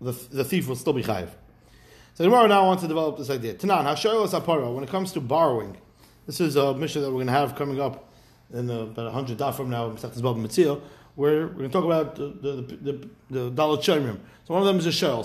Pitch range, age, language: 140-185 Hz, 30-49, English